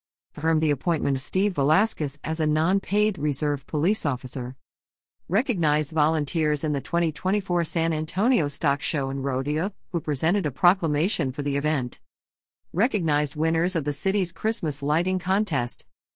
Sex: female